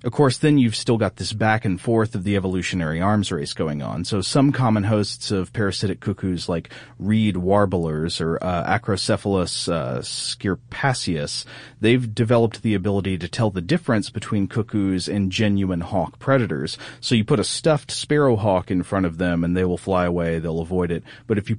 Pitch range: 90-115 Hz